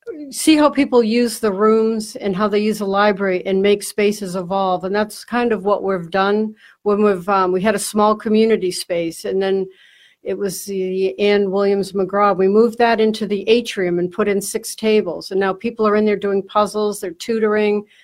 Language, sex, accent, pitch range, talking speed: English, female, American, 195-220 Hz, 205 wpm